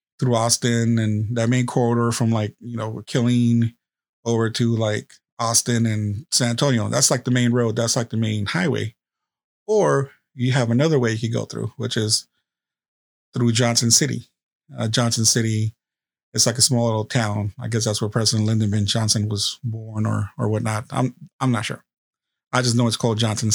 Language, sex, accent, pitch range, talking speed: English, male, American, 115-125 Hz, 190 wpm